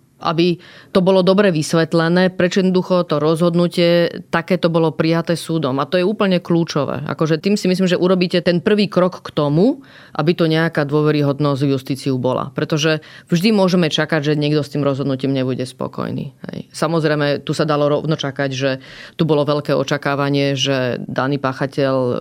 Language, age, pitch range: Slovak, 30-49, 140-175 Hz